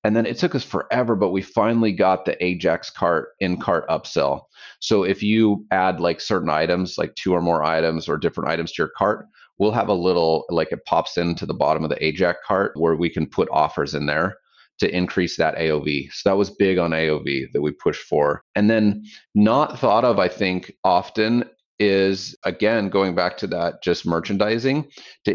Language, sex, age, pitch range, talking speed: English, male, 30-49, 90-110 Hz, 205 wpm